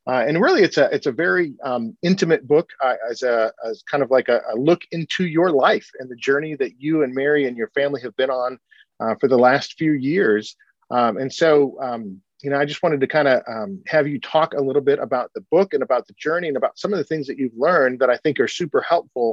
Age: 40-59